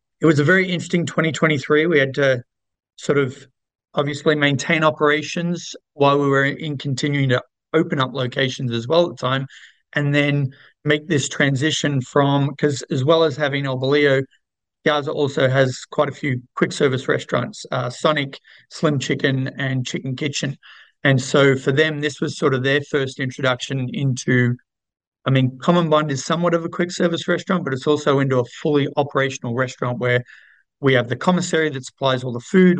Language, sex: English, male